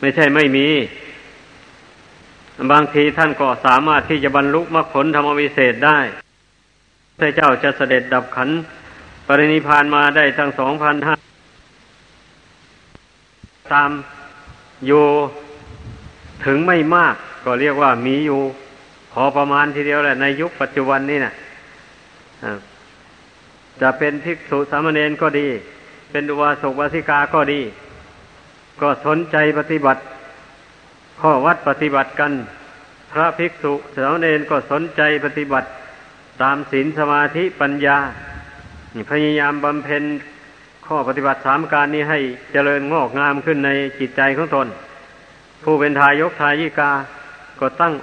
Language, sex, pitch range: Thai, male, 135-150 Hz